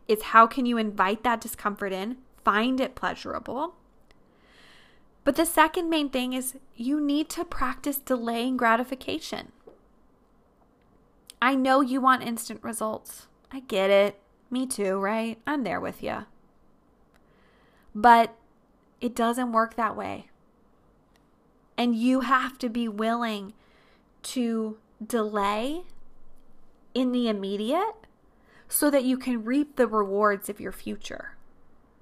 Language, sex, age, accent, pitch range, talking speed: English, female, 20-39, American, 220-270 Hz, 125 wpm